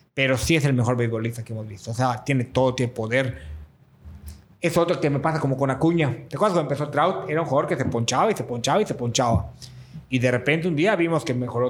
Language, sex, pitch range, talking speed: Spanish, male, 125-155 Hz, 245 wpm